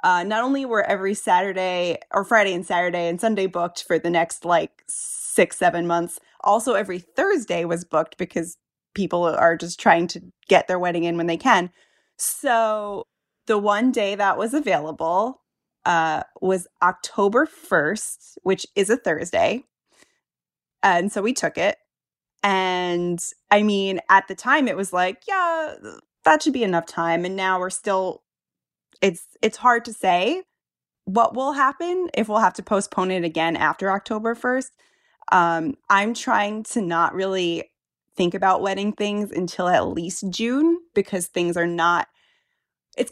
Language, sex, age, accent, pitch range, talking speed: English, female, 20-39, American, 175-225 Hz, 160 wpm